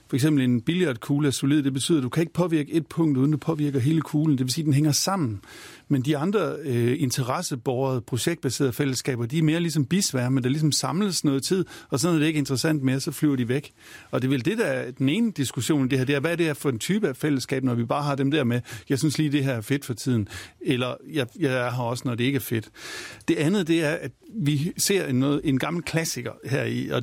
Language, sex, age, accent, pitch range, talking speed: Danish, male, 50-69, native, 125-155 Hz, 270 wpm